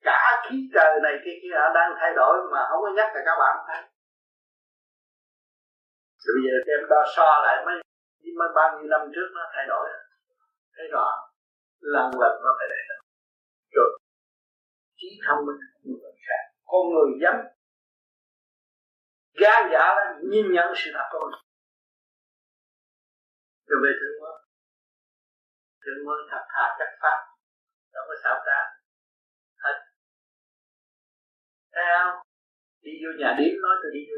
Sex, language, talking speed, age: male, Vietnamese, 150 wpm, 50-69